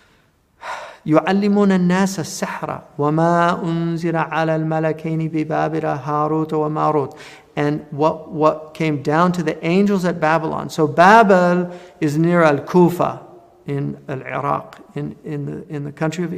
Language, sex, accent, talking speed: English, male, American, 90 wpm